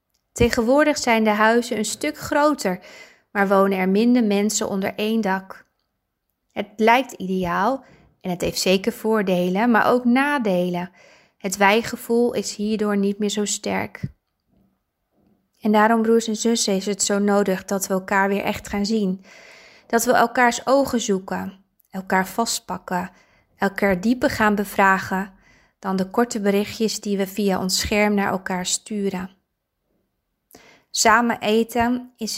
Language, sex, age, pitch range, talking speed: Dutch, female, 20-39, 195-225 Hz, 140 wpm